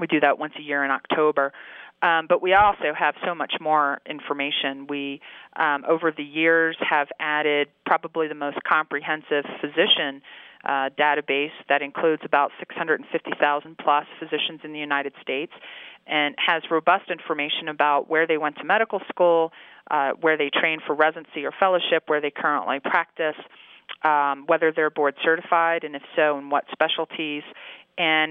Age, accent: 40-59, American